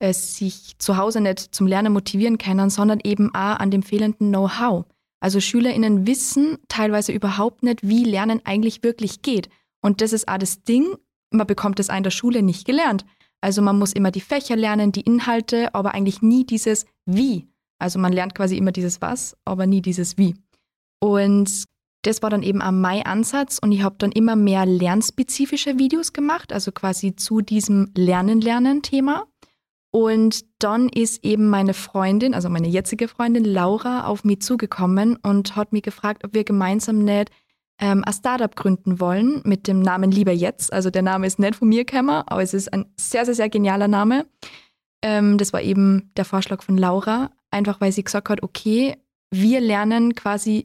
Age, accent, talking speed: 20-39, German, 180 wpm